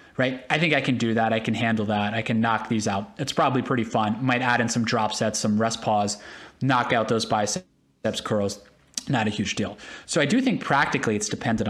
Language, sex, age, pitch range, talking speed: English, male, 30-49, 110-150 Hz, 230 wpm